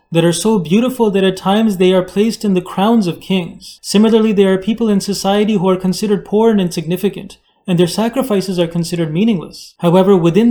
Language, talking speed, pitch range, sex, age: English, 200 wpm, 175-210 Hz, male, 30-49